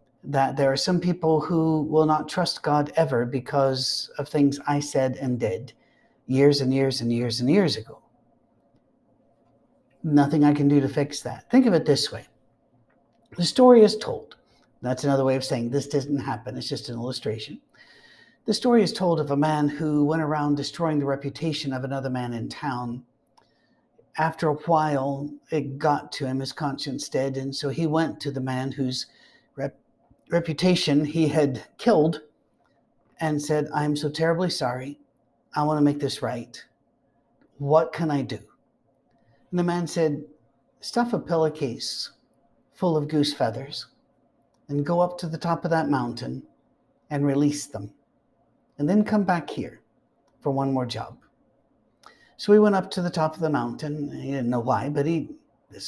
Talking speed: 170 wpm